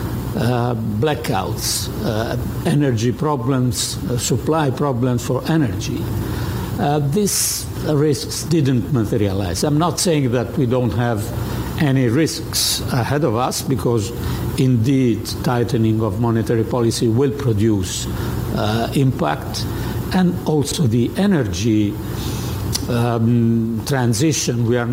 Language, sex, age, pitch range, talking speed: English, male, 60-79, 110-130 Hz, 110 wpm